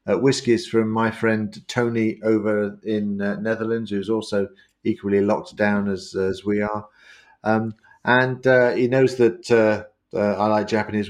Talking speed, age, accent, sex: 170 wpm, 50-69, British, male